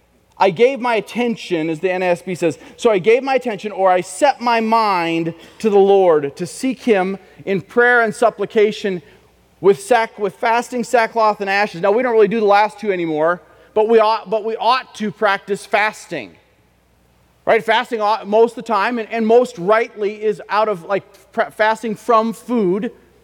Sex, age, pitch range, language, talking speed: male, 30-49, 200-245 Hz, English, 185 wpm